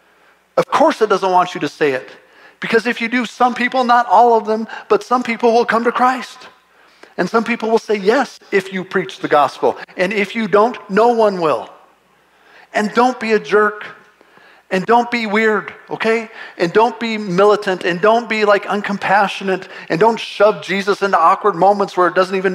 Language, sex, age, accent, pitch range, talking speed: English, male, 50-69, American, 180-220 Hz, 195 wpm